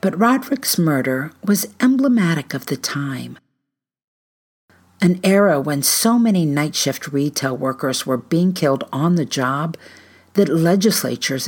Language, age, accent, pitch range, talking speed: English, 50-69, American, 135-180 Hz, 130 wpm